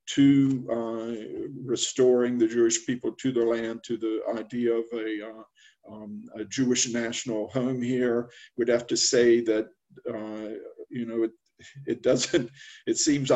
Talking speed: 155 wpm